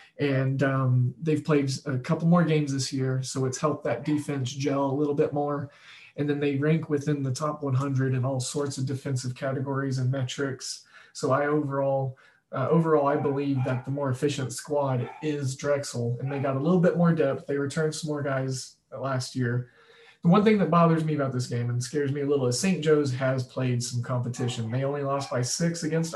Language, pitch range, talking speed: English, 130-150 Hz, 210 wpm